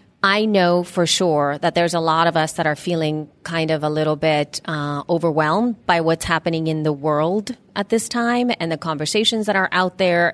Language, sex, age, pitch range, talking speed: English, female, 30-49, 160-200 Hz, 210 wpm